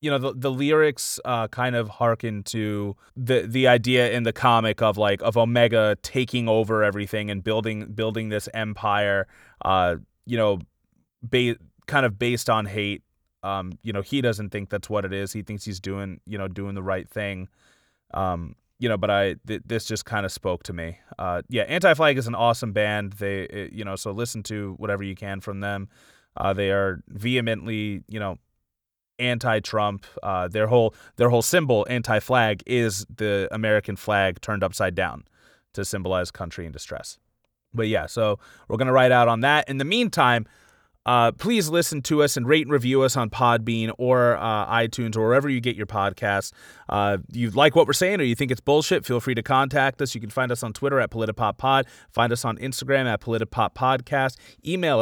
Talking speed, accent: 200 wpm, American